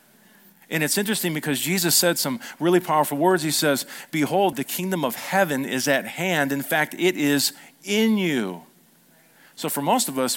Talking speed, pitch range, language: 180 wpm, 135-195 Hz, English